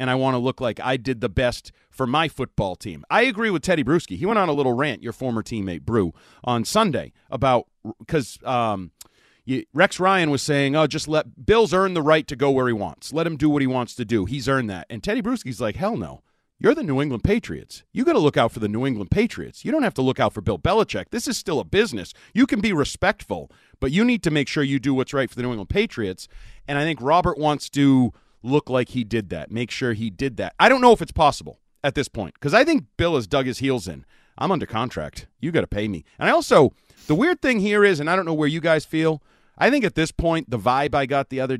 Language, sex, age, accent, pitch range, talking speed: English, male, 40-59, American, 120-165 Hz, 265 wpm